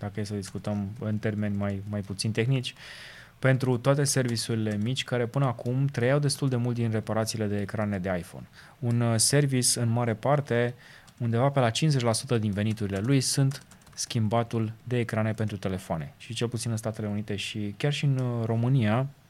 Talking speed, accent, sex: 175 wpm, native, male